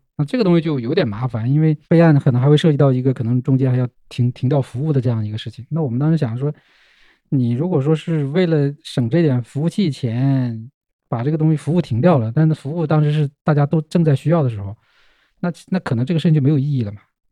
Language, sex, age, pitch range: Chinese, male, 20-39, 115-140 Hz